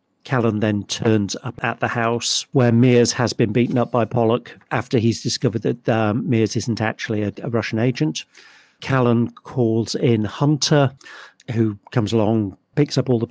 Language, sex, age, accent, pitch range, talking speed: English, male, 50-69, British, 110-120 Hz, 170 wpm